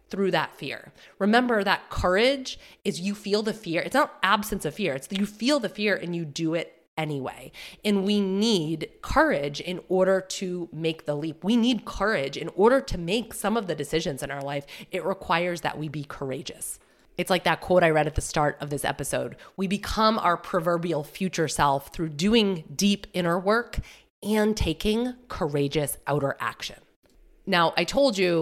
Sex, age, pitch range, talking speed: female, 20-39, 150-200 Hz, 185 wpm